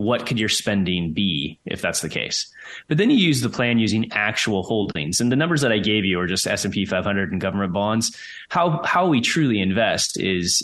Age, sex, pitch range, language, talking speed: 30-49, male, 100-125 Hz, English, 215 wpm